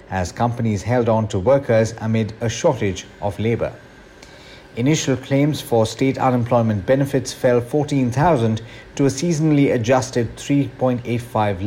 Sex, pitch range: male, 105-135 Hz